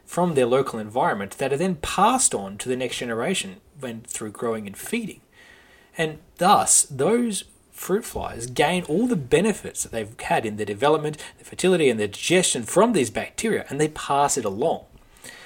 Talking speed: 180 wpm